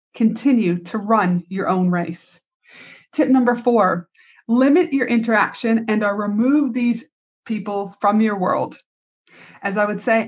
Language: English